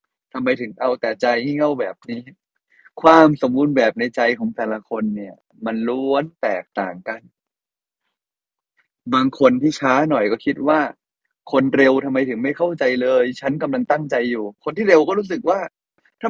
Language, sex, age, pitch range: Thai, male, 20-39, 120-160 Hz